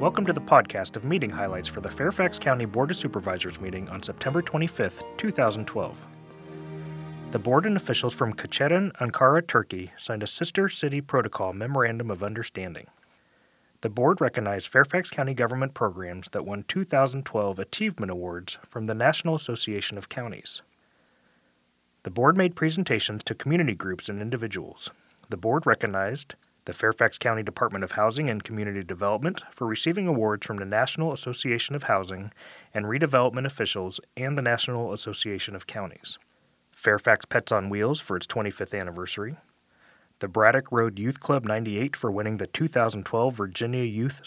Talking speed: 150 wpm